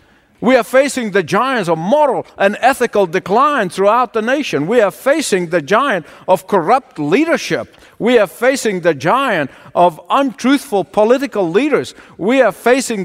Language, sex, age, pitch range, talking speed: English, male, 50-69, 185-260 Hz, 150 wpm